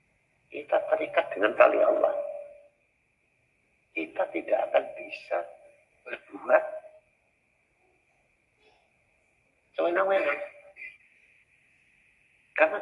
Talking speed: 55 wpm